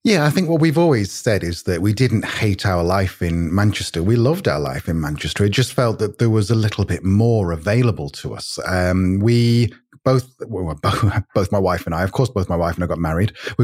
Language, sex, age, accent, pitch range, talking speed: English, male, 30-49, British, 90-120 Hz, 240 wpm